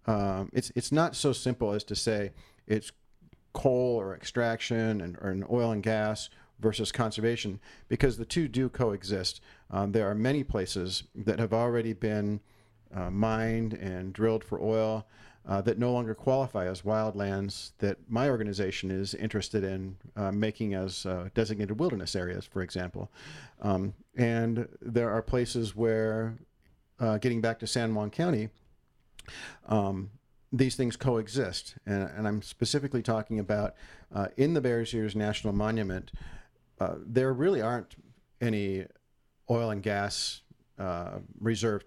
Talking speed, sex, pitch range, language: 150 wpm, male, 100-120 Hz, English